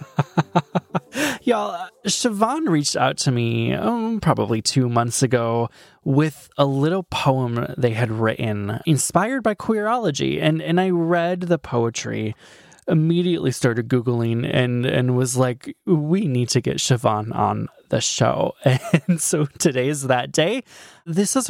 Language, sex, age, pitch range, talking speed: English, male, 20-39, 115-150 Hz, 140 wpm